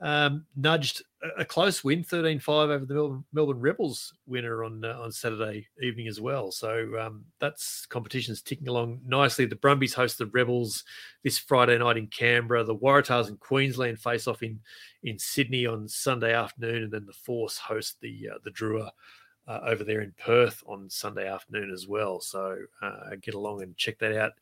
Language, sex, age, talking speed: English, male, 30-49, 185 wpm